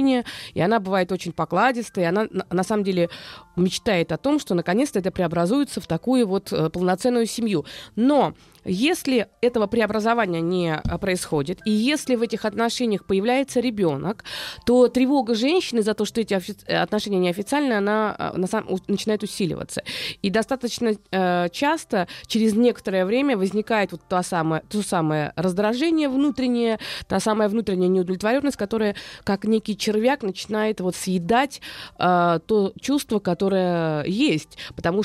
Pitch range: 180-230 Hz